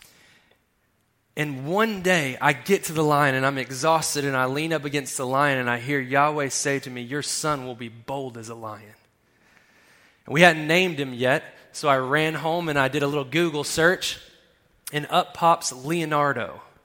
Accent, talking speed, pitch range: American, 190 wpm, 130-155 Hz